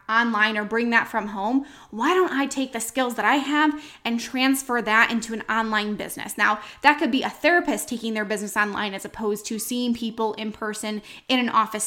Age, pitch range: 10-29, 220-270 Hz